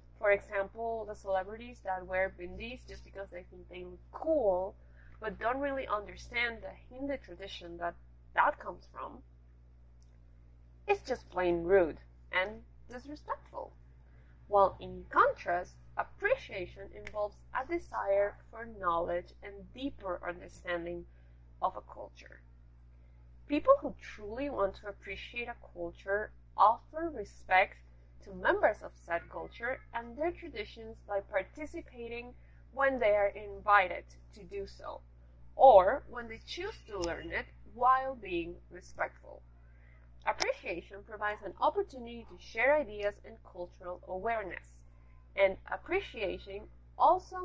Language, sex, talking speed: English, female, 120 wpm